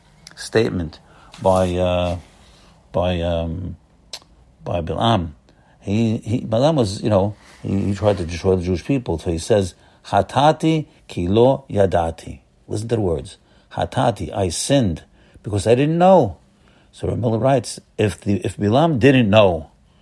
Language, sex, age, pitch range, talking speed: English, male, 50-69, 95-125 Hz, 140 wpm